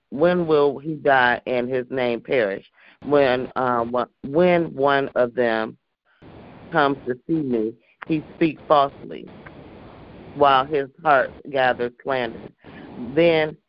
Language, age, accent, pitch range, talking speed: English, 40-59, American, 120-145 Hz, 120 wpm